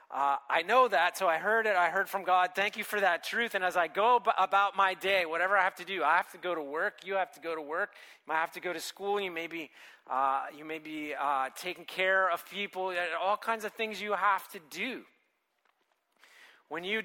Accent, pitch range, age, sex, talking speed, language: American, 155-200 Hz, 30-49, male, 235 wpm, English